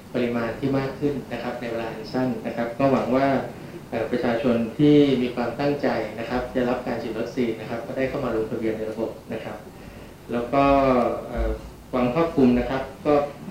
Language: Thai